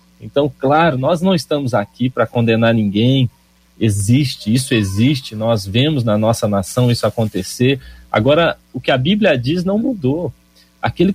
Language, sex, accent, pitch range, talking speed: Portuguese, male, Brazilian, 110-170 Hz, 150 wpm